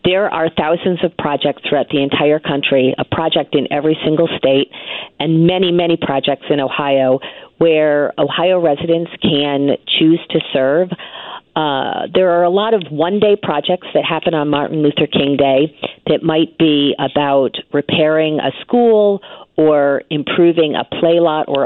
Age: 40-59